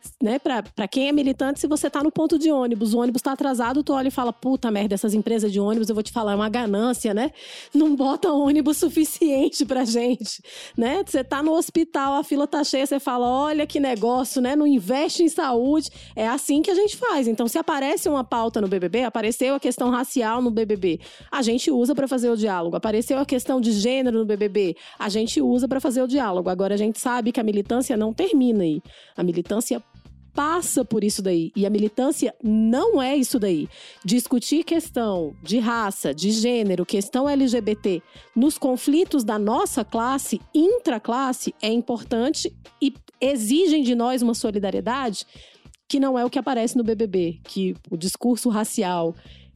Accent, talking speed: Brazilian, 190 wpm